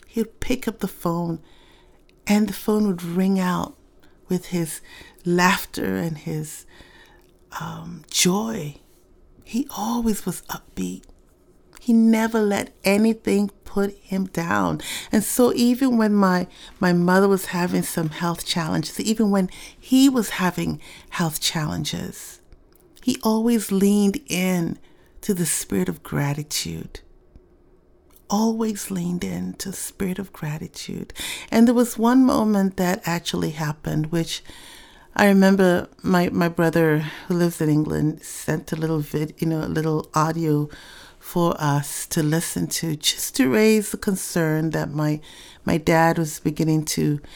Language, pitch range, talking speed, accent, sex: English, 155-205 Hz, 140 wpm, American, female